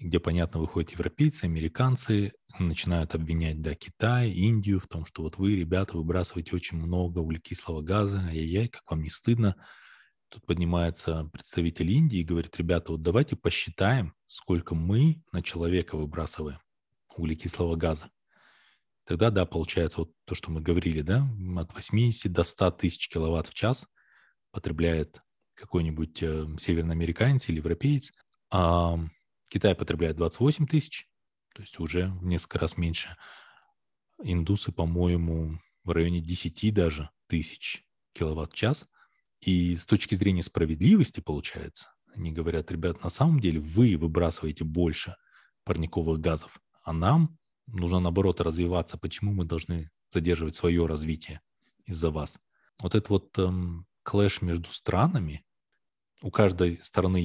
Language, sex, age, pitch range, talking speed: Russian, male, 20-39, 80-100 Hz, 135 wpm